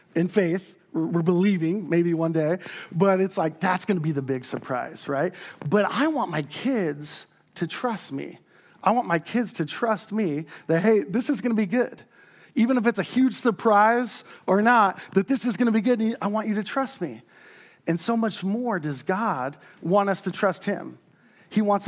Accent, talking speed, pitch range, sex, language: American, 205 wpm, 180-230 Hz, male, English